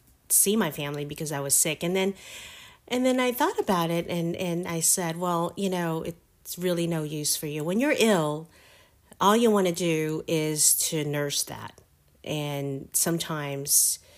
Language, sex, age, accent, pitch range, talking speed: English, female, 40-59, American, 140-170 Hz, 180 wpm